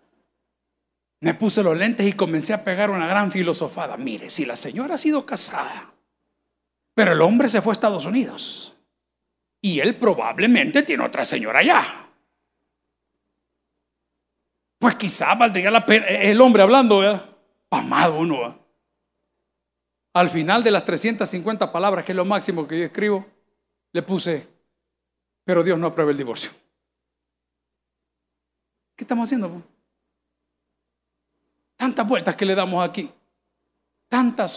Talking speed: 130 wpm